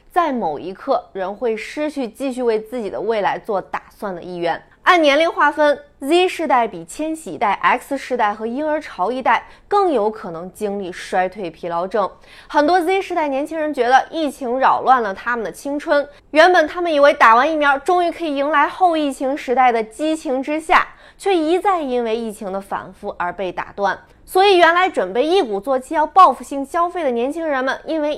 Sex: female